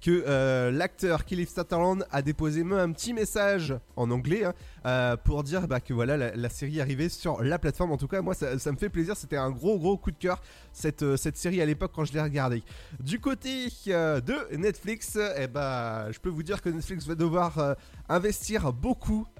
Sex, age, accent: male, 20-39, French